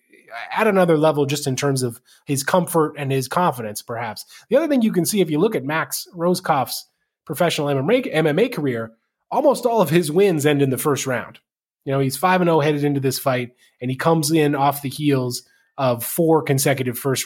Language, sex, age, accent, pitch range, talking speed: English, male, 20-39, American, 130-175 Hz, 210 wpm